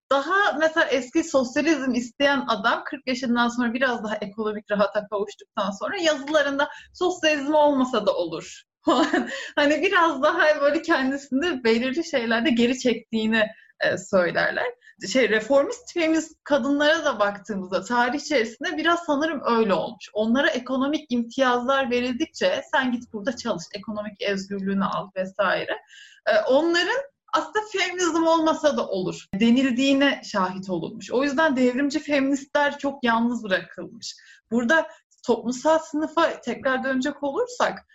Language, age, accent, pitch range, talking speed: Turkish, 30-49, native, 230-305 Hz, 120 wpm